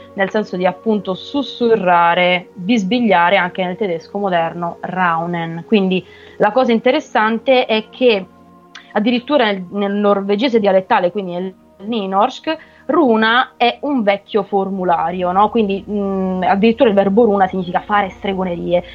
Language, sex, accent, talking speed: Italian, female, native, 125 wpm